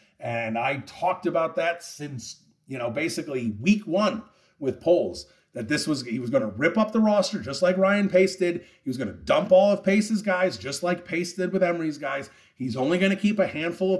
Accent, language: American, English